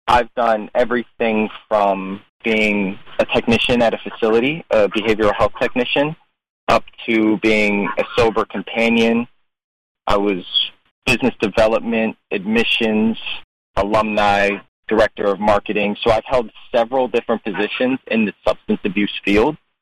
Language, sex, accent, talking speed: English, male, American, 120 wpm